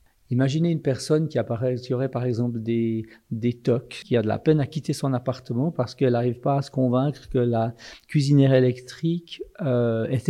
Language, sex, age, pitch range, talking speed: French, male, 50-69, 120-145 Hz, 200 wpm